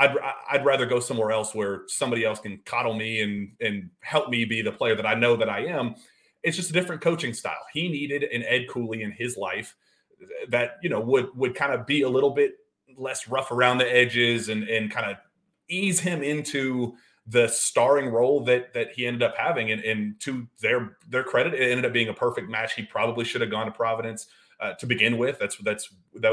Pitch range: 110-135 Hz